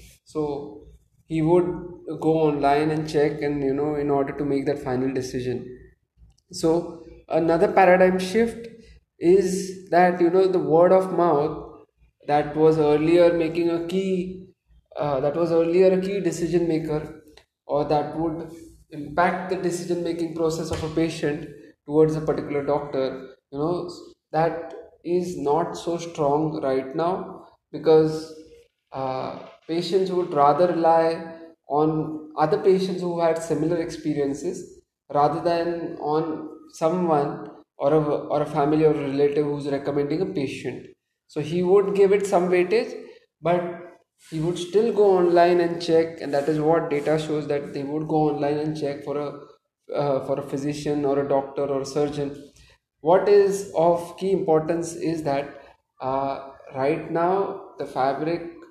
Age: 20-39